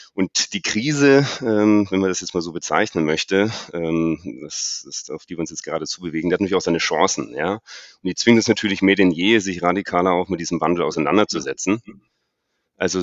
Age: 30-49